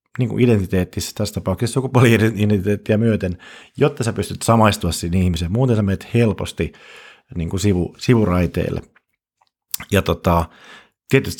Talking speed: 115 wpm